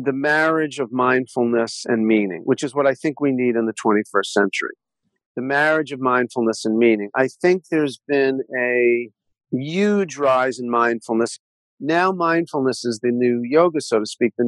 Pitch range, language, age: 125-160 Hz, English, 50-69